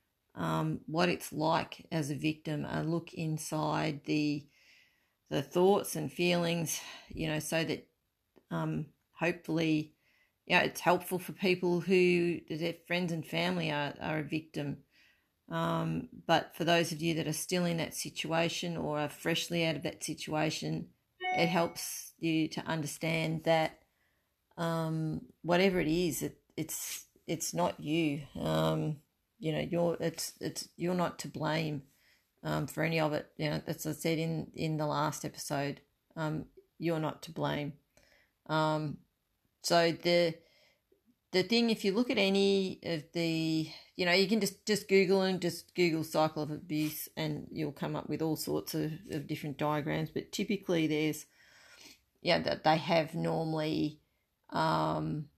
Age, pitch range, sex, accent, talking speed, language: 40-59, 150-170 Hz, female, Australian, 160 wpm, English